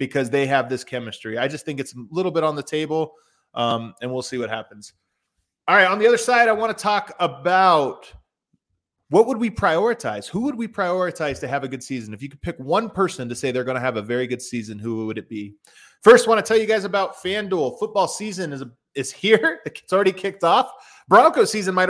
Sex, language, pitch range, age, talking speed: male, English, 130-190 Hz, 30-49, 235 wpm